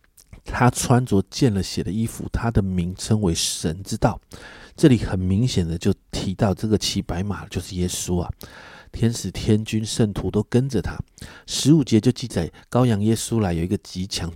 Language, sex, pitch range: Chinese, male, 95-130 Hz